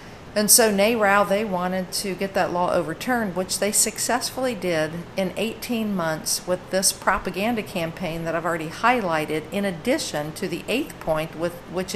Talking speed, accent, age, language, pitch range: 160 wpm, American, 50-69, English, 165-200 Hz